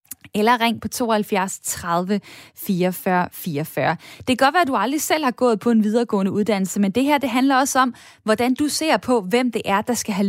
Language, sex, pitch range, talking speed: Danish, female, 215-270 Hz, 215 wpm